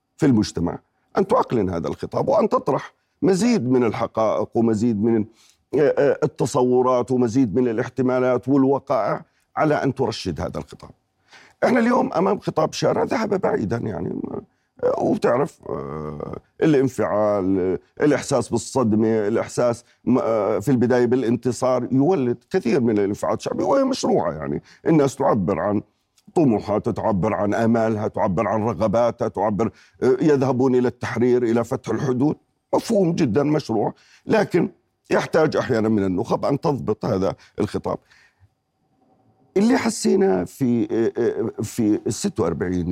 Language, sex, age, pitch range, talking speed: Arabic, male, 40-59, 110-135 Hz, 115 wpm